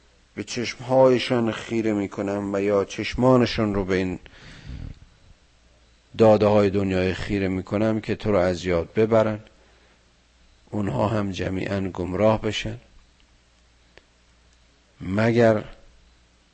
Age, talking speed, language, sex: 50-69, 90 wpm, Persian, male